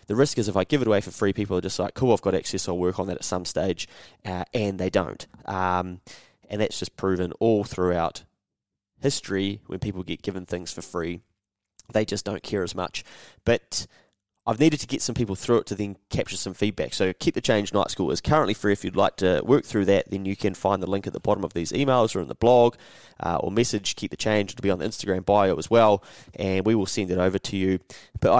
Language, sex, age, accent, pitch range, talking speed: English, male, 20-39, Australian, 95-120 Hz, 250 wpm